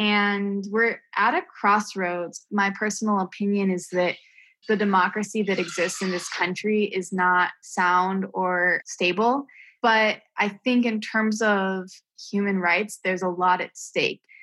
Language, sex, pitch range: English, female, 185-210 Hz